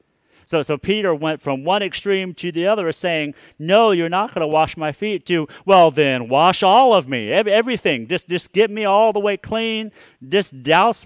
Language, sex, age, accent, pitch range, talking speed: English, male, 50-69, American, 130-190 Hz, 200 wpm